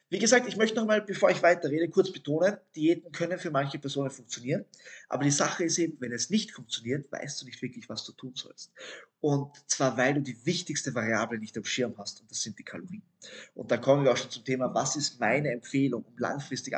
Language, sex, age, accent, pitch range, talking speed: German, male, 20-39, German, 130-185 Hz, 225 wpm